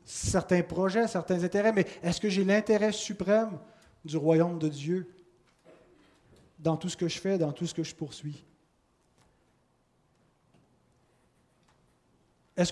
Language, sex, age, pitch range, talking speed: French, male, 30-49, 155-195 Hz, 125 wpm